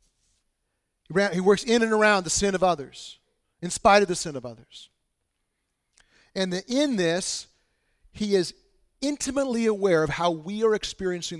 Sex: male